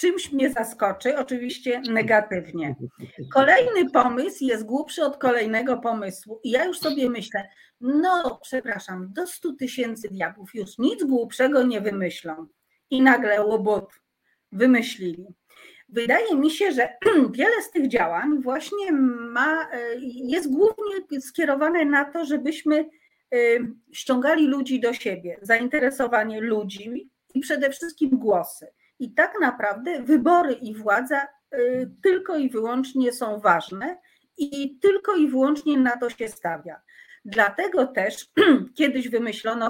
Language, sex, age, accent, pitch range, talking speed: Polish, female, 40-59, native, 220-290 Hz, 120 wpm